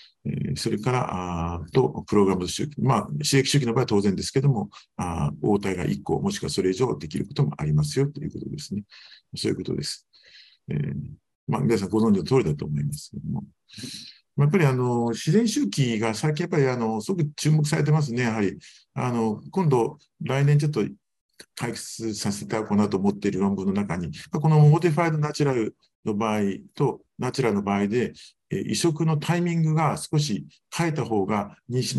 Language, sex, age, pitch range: Japanese, male, 50-69, 100-150 Hz